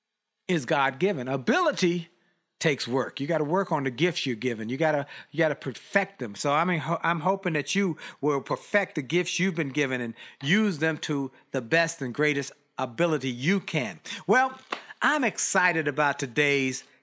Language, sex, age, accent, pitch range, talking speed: English, male, 50-69, American, 155-205 Hz, 190 wpm